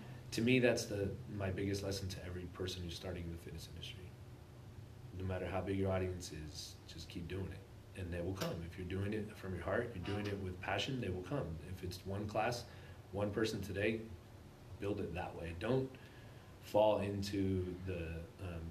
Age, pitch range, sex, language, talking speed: 30-49, 90-105 Hz, male, English, 195 wpm